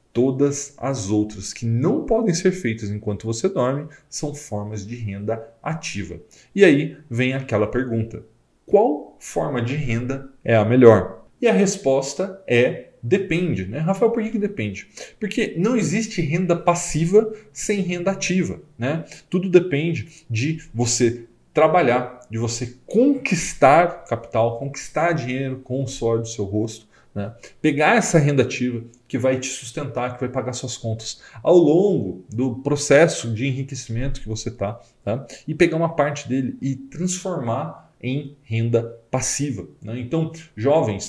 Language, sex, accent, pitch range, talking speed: Portuguese, male, Brazilian, 115-150 Hz, 150 wpm